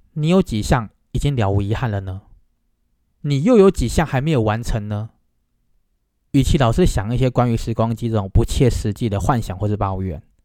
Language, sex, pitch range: Chinese, male, 105-140 Hz